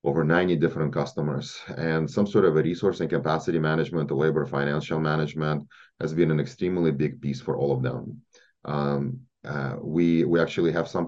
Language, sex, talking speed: English, male, 185 wpm